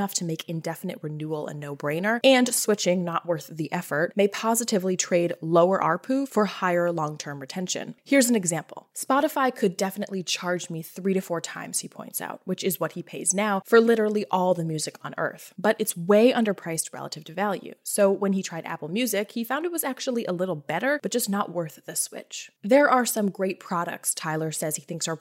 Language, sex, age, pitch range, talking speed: English, female, 20-39, 165-215 Hz, 205 wpm